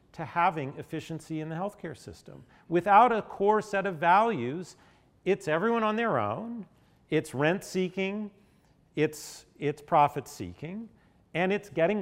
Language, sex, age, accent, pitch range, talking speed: English, male, 50-69, American, 120-175 Hz, 140 wpm